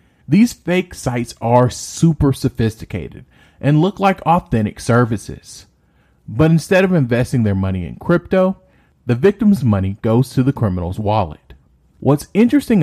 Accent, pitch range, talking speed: American, 100-145 Hz, 135 wpm